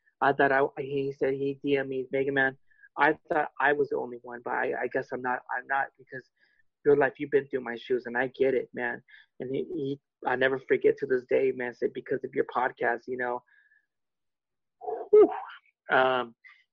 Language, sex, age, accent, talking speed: English, male, 30-49, American, 205 wpm